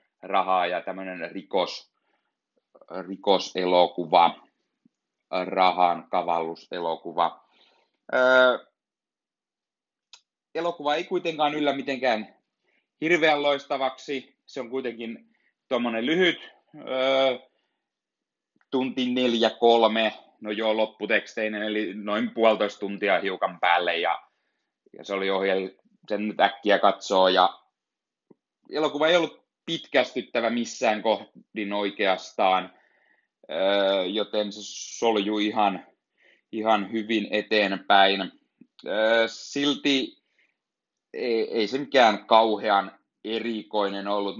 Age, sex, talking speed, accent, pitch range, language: 30-49, male, 90 wpm, native, 100-130 Hz, Finnish